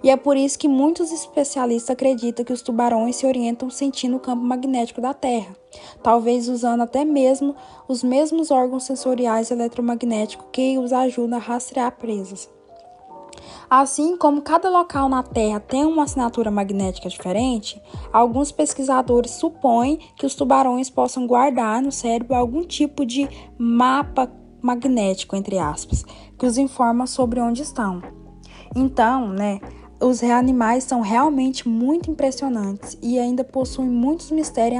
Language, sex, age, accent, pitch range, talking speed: Portuguese, female, 10-29, Brazilian, 240-280 Hz, 140 wpm